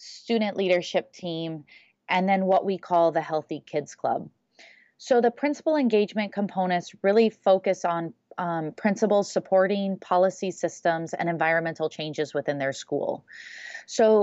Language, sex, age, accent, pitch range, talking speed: English, female, 30-49, American, 165-200 Hz, 135 wpm